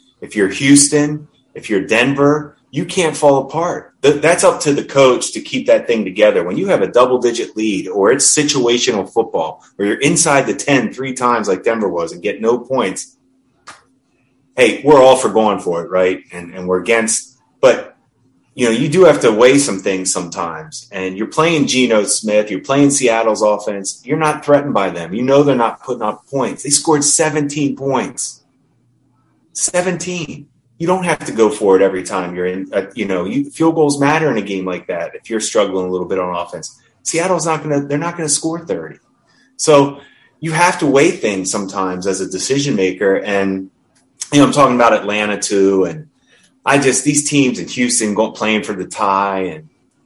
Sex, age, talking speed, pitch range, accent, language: male, 30-49, 200 wpm, 100-150 Hz, American, English